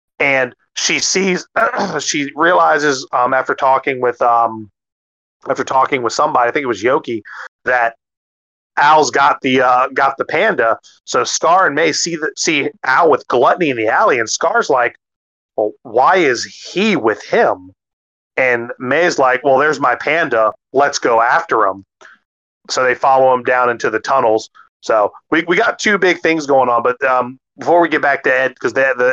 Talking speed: 185 wpm